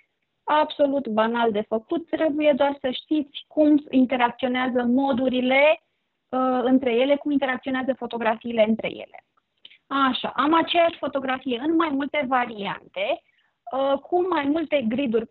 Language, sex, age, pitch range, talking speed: Romanian, female, 30-49, 250-310 Hz, 120 wpm